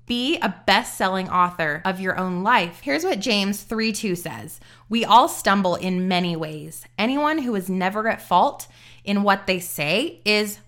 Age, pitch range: 20-39, 180-245 Hz